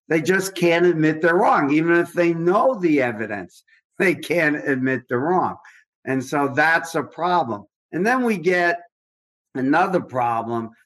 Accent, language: American, English